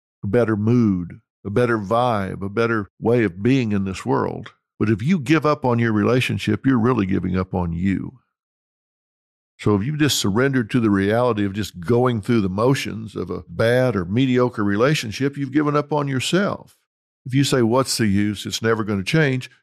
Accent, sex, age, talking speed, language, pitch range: American, male, 50-69, 195 wpm, English, 105-140 Hz